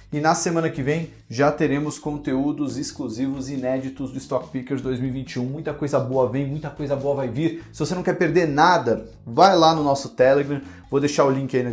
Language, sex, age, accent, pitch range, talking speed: Portuguese, male, 40-59, Brazilian, 130-170 Hz, 205 wpm